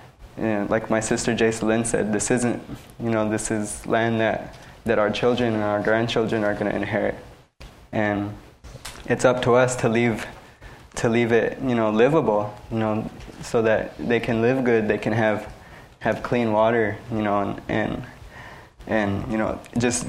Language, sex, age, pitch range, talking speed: English, male, 20-39, 110-125 Hz, 175 wpm